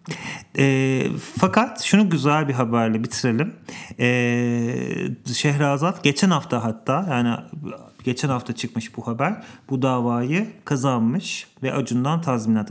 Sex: male